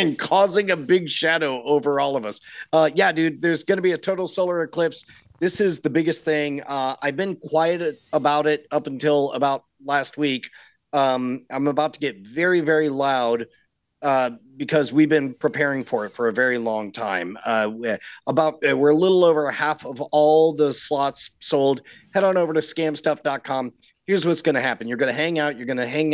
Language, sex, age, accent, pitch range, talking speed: English, male, 40-59, American, 135-155 Hz, 200 wpm